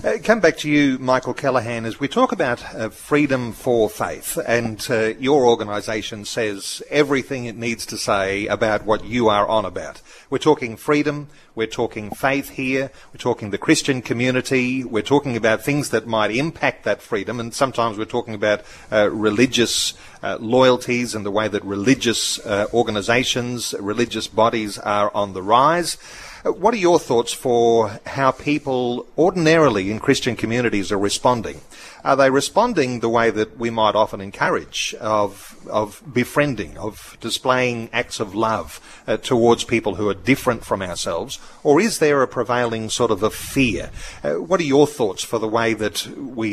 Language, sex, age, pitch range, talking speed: English, male, 30-49, 110-130 Hz, 170 wpm